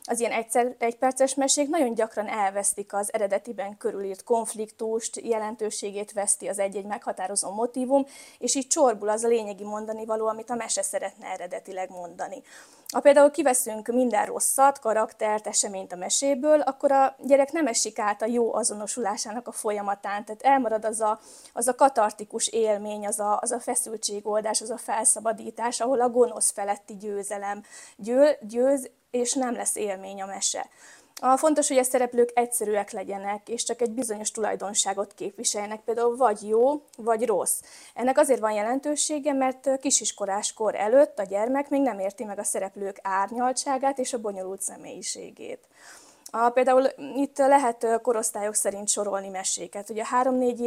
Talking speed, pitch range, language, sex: 150 wpm, 205-255 Hz, Hungarian, female